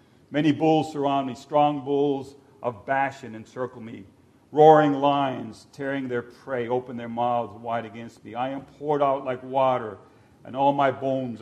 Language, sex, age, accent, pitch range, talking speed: English, male, 50-69, American, 115-135 Hz, 165 wpm